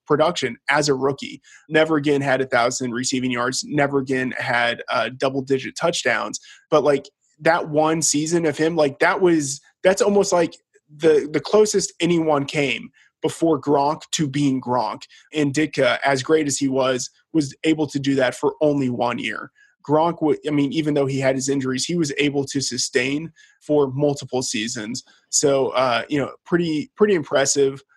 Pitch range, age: 130-155 Hz, 20-39